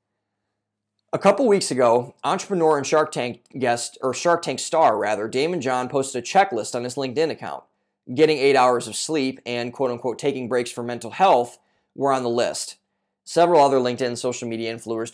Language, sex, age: English, male, 20-39